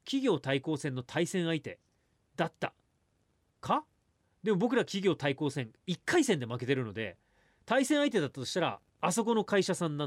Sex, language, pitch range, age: male, Japanese, 115-190 Hz, 40-59